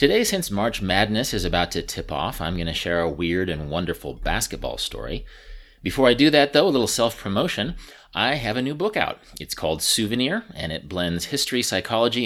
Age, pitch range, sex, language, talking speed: 30-49, 85-115 Hz, male, English, 200 wpm